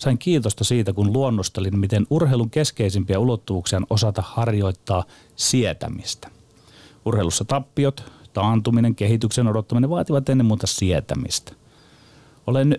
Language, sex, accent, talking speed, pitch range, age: Finnish, male, native, 110 wpm, 105-130 Hz, 30-49